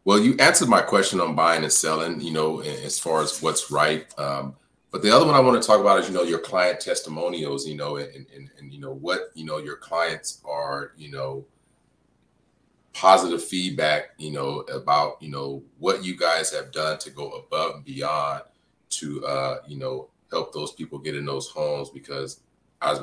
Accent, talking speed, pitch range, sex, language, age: American, 195 wpm, 70-85 Hz, male, English, 30-49